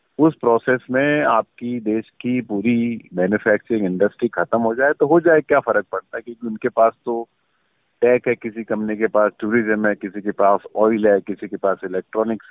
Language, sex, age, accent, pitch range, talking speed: Hindi, male, 40-59, native, 105-130 Hz, 190 wpm